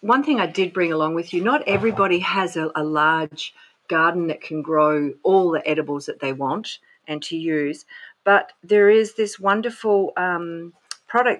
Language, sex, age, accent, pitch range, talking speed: English, female, 50-69, Australian, 155-200 Hz, 180 wpm